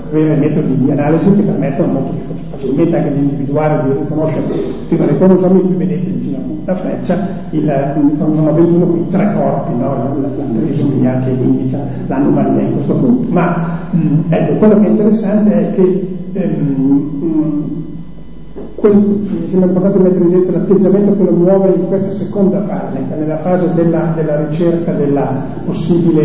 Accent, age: native, 40-59